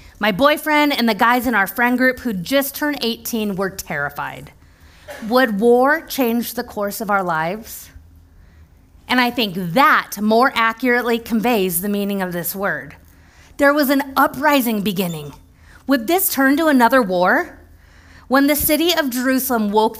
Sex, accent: female, American